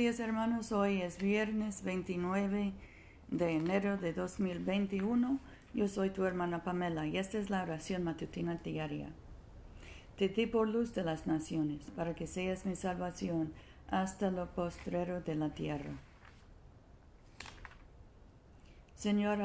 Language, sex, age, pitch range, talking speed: Spanish, female, 50-69, 165-205 Hz, 130 wpm